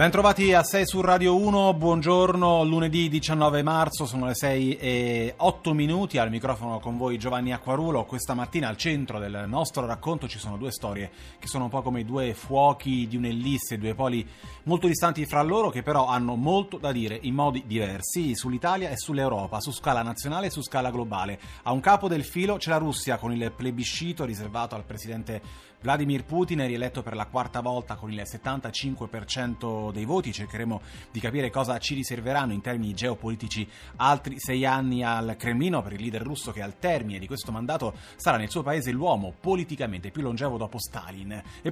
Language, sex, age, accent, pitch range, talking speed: Italian, male, 30-49, native, 115-150 Hz, 190 wpm